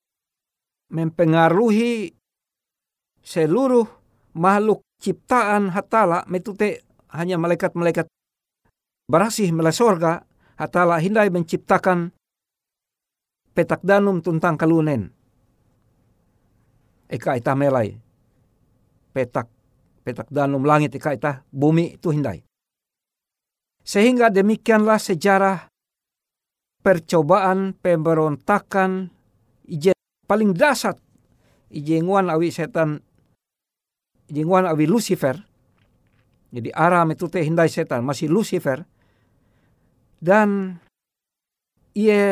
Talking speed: 75 wpm